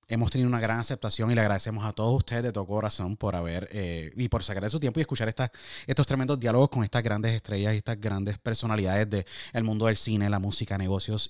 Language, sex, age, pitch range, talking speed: Spanish, male, 30-49, 100-125 Hz, 230 wpm